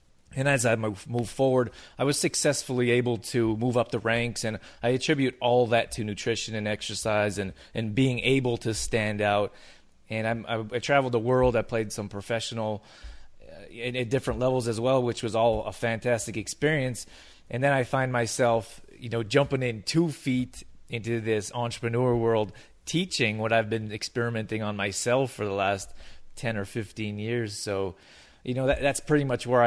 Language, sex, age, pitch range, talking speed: English, male, 20-39, 110-125 Hz, 180 wpm